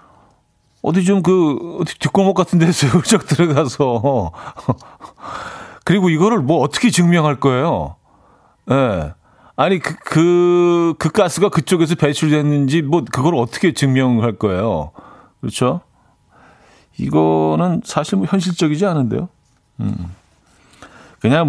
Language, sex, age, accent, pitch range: Korean, male, 40-59, native, 110-160 Hz